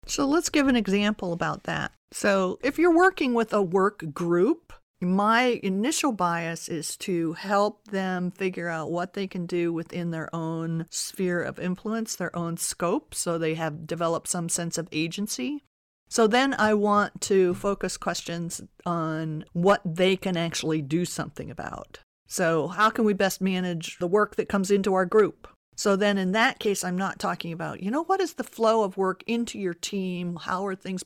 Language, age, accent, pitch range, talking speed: English, 50-69, American, 165-205 Hz, 185 wpm